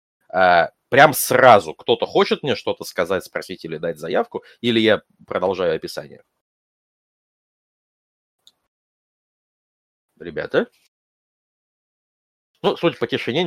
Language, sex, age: Russian, male, 30-49